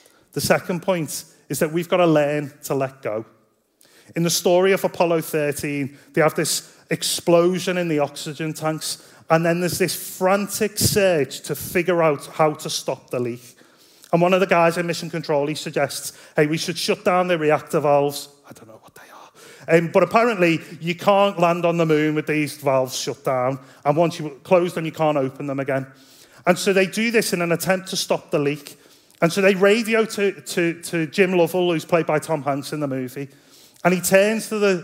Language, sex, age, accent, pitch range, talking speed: English, male, 30-49, British, 145-180 Hz, 210 wpm